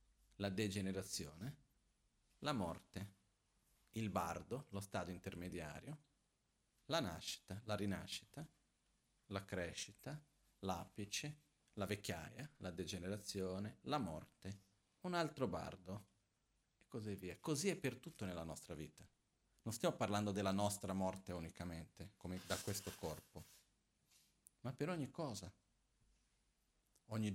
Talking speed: 110 wpm